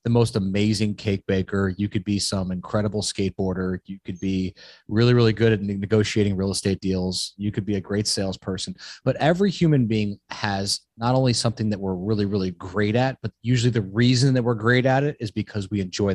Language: English